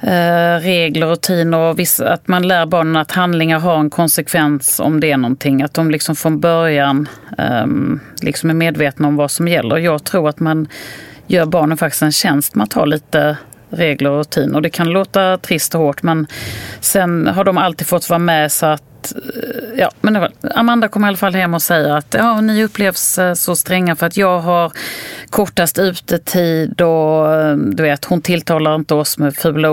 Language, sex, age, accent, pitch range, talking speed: Swedish, female, 30-49, native, 150-175 Hz, 195 wpm